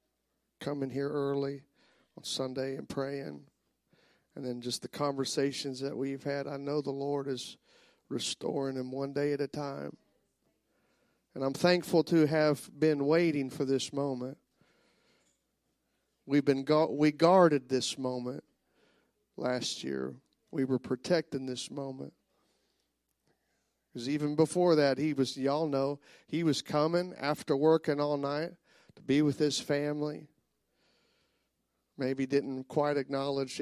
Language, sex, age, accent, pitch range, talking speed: English, male, 40-59, American, 130-150 Hz, 135 wpm